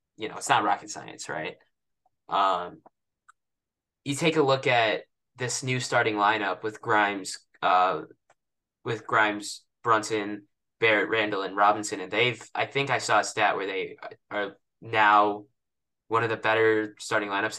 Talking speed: 155 wpm